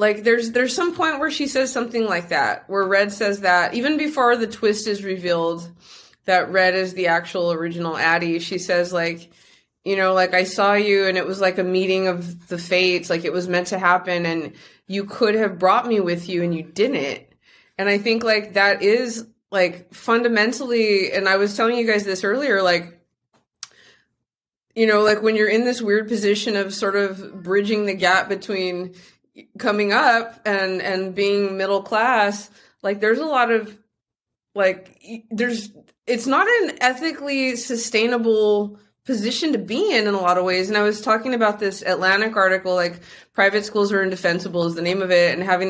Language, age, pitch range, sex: English, 20-39, 180-225 Hz, female